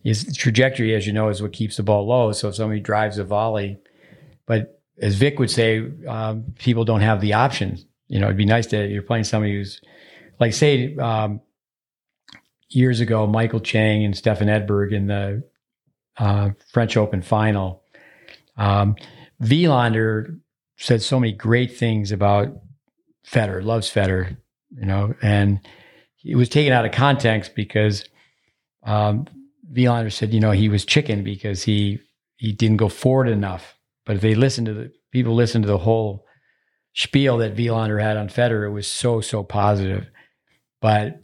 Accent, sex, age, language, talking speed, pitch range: American, male, 50-69, English, 165 wpm, 105-120 Hz